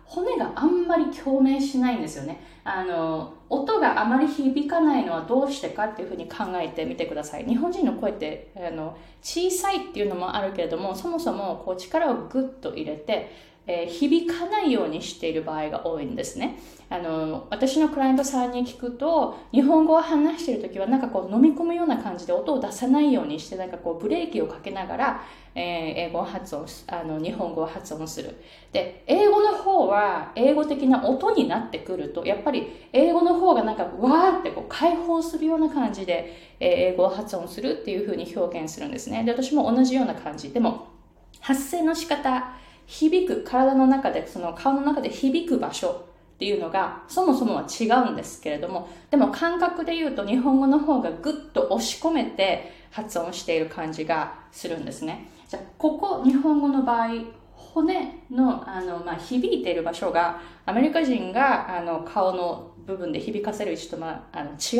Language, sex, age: Japanese, female, 20-39